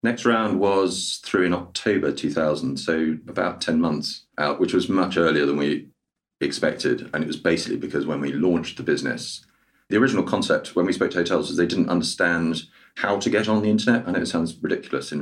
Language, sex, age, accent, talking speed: English, male, 40-59, British, 210 wpm